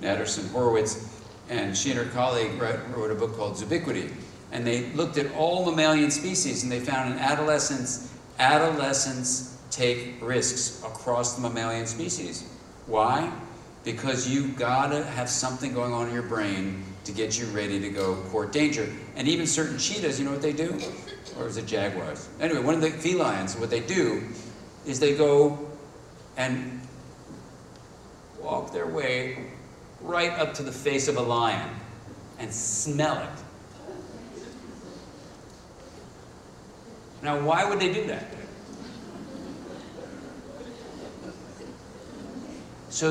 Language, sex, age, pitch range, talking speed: English, male, 50-69, 120-155 Hz, 135 wpm